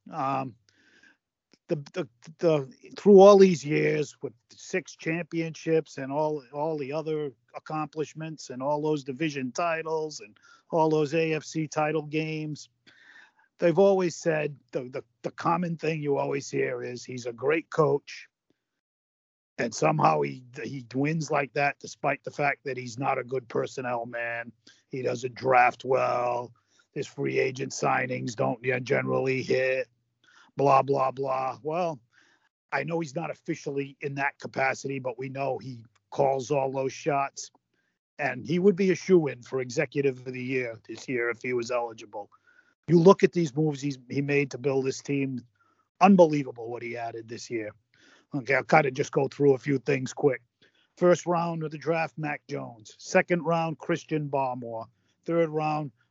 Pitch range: 125-160 Hz